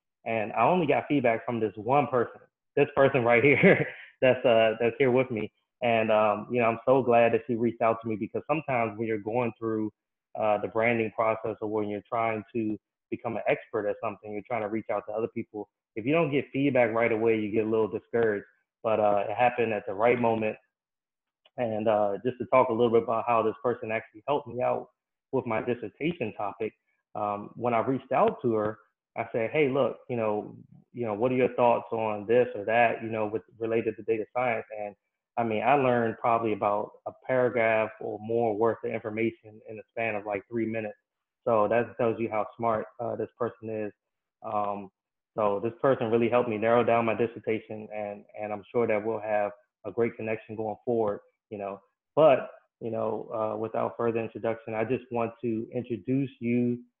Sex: male